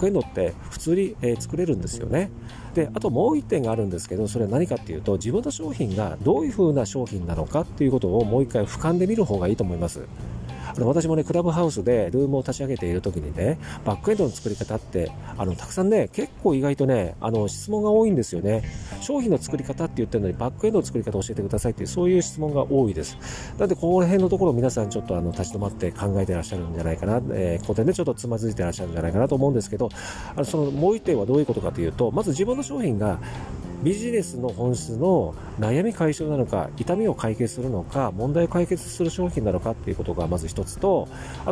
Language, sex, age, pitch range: Japanese, male, 40-59, 100-155 Hz